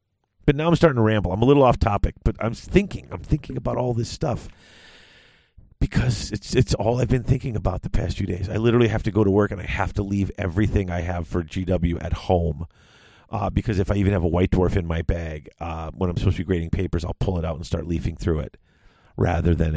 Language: English